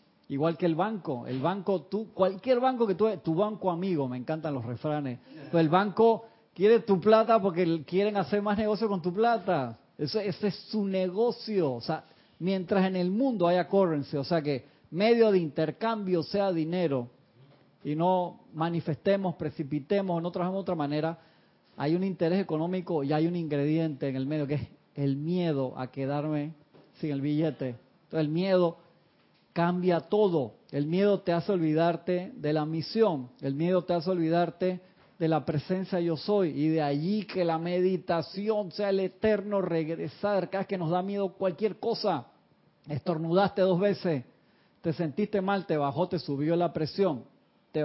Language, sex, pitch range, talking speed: Spanish, male, 155-195 Hz, 170 wpm